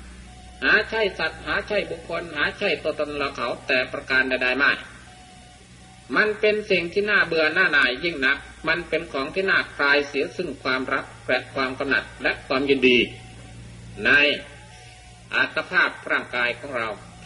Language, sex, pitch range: Thai, male, 120-195 Hz